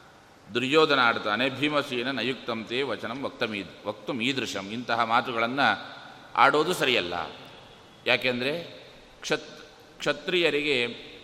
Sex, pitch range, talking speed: male, 125-155 Hz, 85 wpm